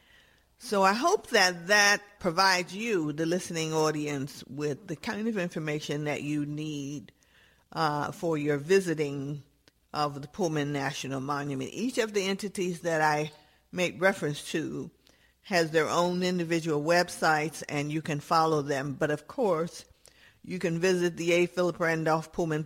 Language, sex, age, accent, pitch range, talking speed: English, female, 50-69, American, 150-185 Hz, 150 wpm